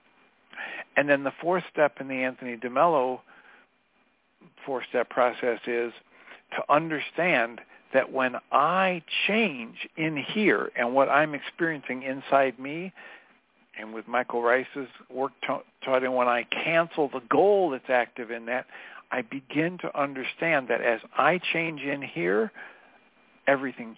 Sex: male